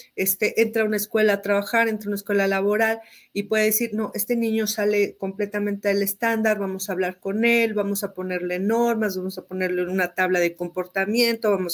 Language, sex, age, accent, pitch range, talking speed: Spanish, female, 40-59, Mexican, 195-240 Hz, 200 wpm